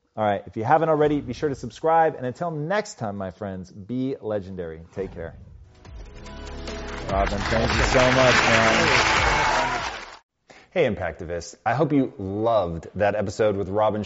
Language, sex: Hindi, male